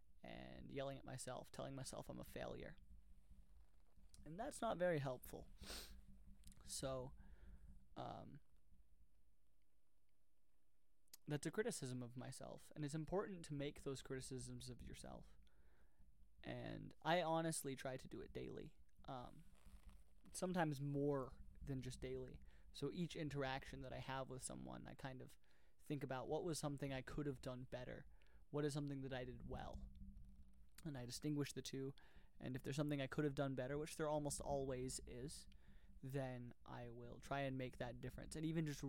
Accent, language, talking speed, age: American, English, 155 wpm, 20-39